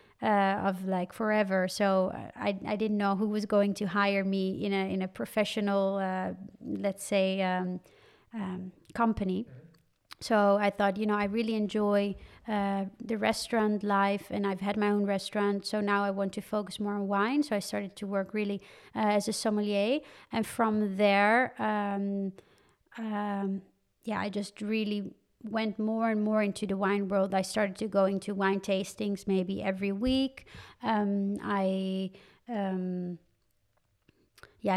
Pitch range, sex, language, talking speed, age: 195-215 Hz, female, English, 160 wpm, 30-49